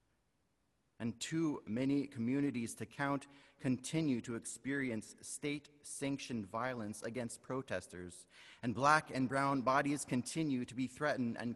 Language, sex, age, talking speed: English, male, 30-49, 125 wpm